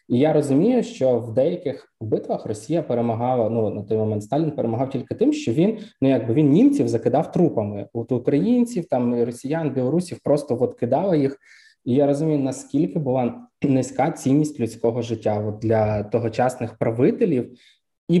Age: 20-39